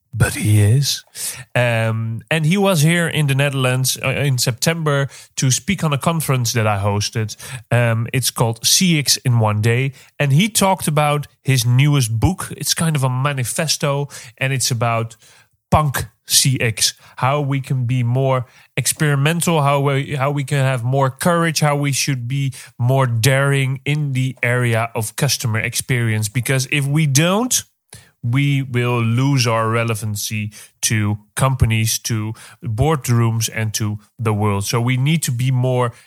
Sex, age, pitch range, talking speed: male, 30-49, 115-140 Hz, 155 wpm